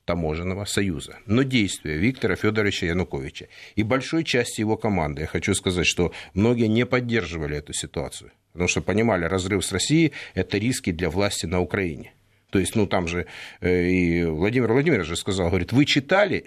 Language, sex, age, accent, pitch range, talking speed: Russian, male, 50-69, native, 95-120 Hz, 170 wpm